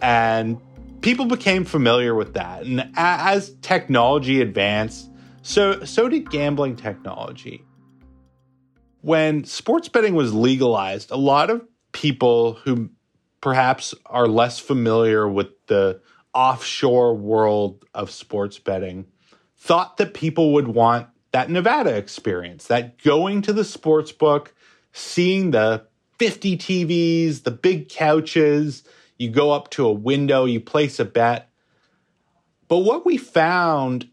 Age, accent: 30-49, American